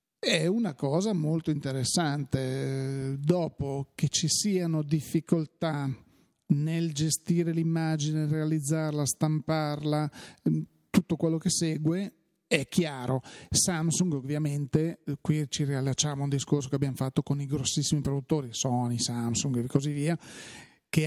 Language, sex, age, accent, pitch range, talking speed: Italian, male, 40-59, native, 140-170 Hz, 120 wpm